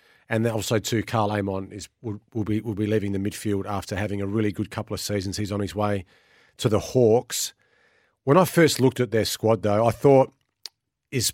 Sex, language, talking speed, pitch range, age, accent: male, English, 210 wpm, 105-120 Hz, 40-59, Australian